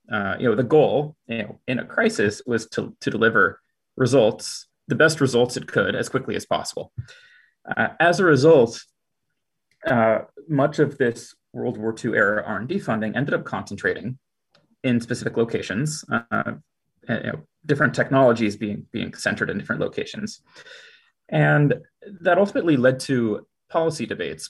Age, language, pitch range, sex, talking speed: 30-49, English, 115-155 Hz, male, 155 wpm